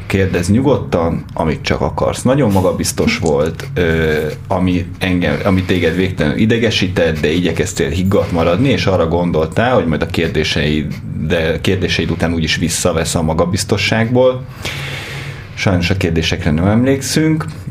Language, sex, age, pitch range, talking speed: Hungarian, male, 30-49, 90-110 Hz, 125 wpm